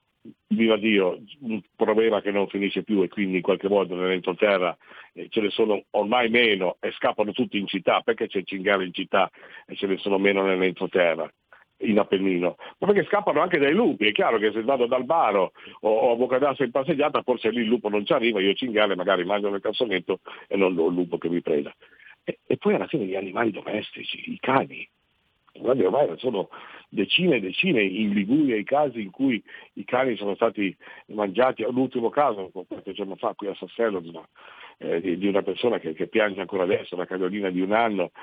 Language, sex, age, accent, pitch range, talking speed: Italian, male, 50-69, native, 95-120 Hz, 195 wpm